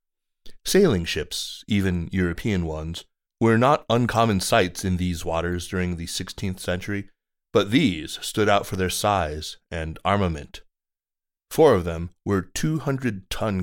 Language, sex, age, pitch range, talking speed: English, male, 30-49, 90-105 Hz, 130 wpm